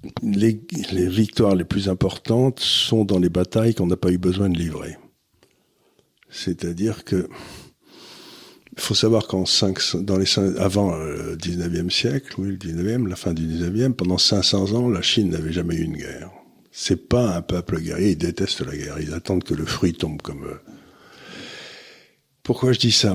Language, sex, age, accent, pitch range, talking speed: French, male, 50-69, French, 90-115 Hz, 175 wpm